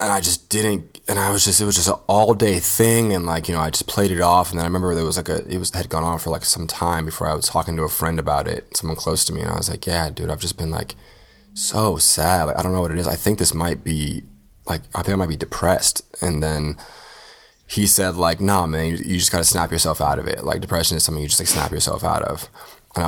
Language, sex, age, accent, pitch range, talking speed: English, male, 20-39, American, 80-95 Hz, 295 wpm